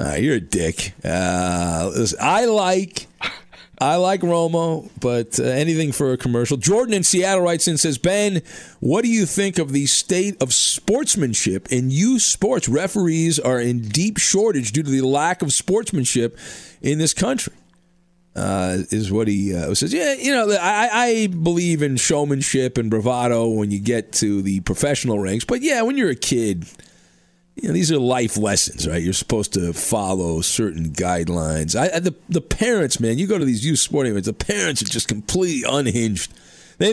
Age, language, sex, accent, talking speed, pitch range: 50-69, English, male, American, 180 wpm, 105-170 Hz